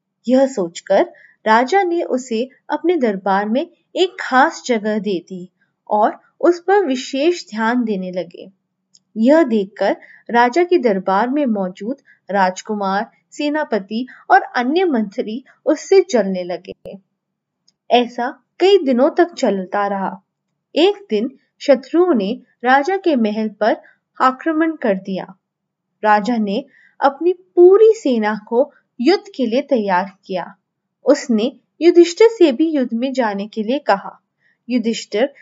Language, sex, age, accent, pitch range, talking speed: English, female, 20-39, Indian, 205-305 Hz, 125 wpm